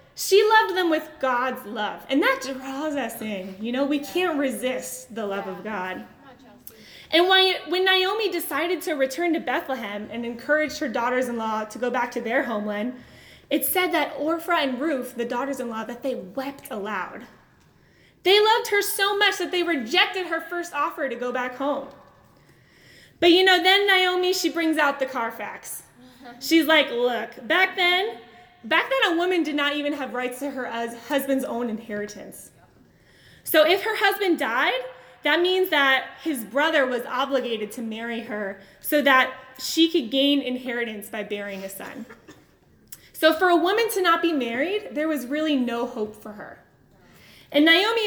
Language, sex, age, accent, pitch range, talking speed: English, female, 10-29, American, 245-340 Hz, 170 wpm